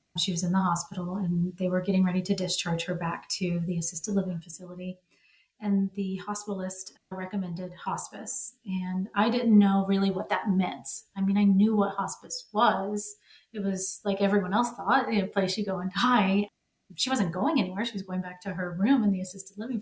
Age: 30-49